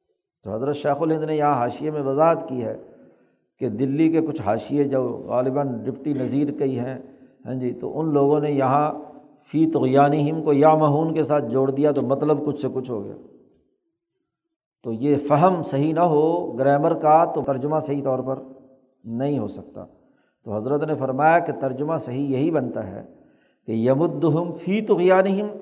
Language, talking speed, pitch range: Urdu, 175 wpm, 140-180 Hz